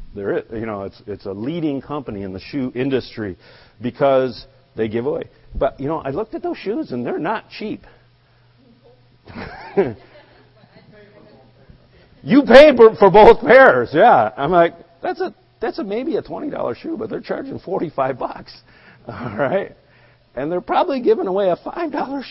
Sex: male